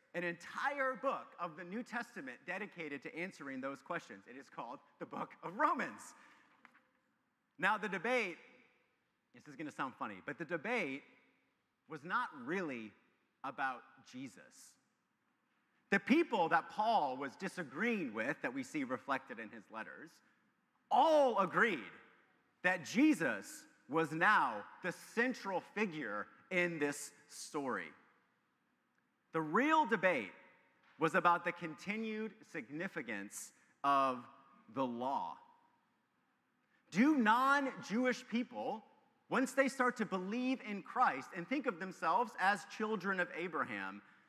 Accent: American